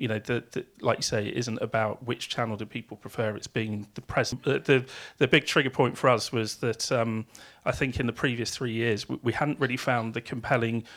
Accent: British